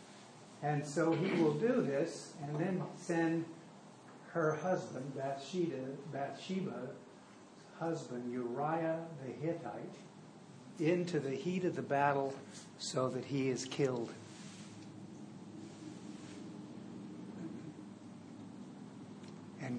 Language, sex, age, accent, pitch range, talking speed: English, male, 60-79, American, 140-195 Hz, 85 wpm